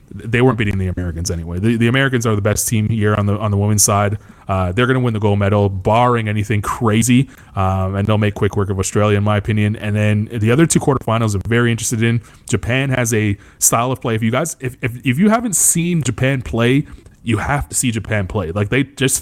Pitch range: 105-125 Hz